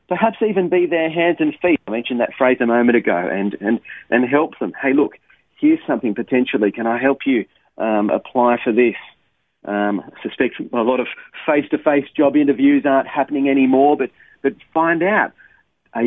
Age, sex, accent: 40-59, male, Australian